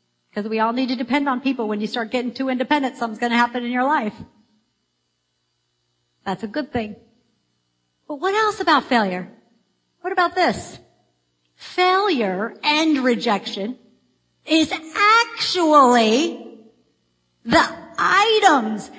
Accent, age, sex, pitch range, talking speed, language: American, 50-69, female, 195-300 Hz, 125 wpm, English